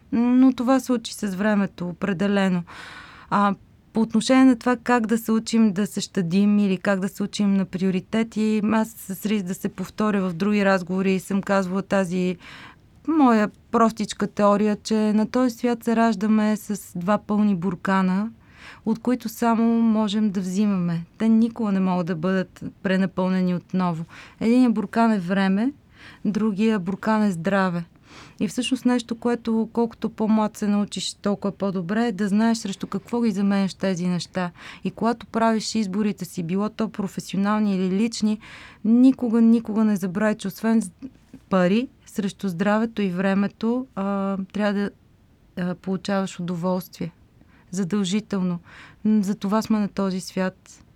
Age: 30-49